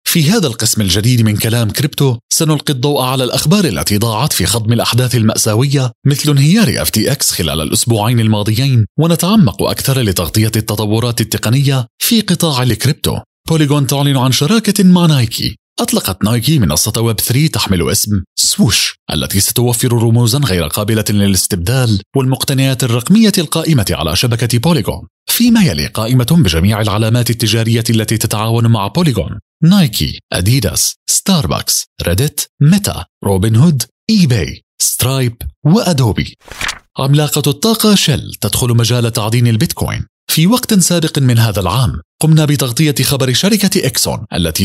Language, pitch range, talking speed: Arabic, 110-145 Hz, 130 wpm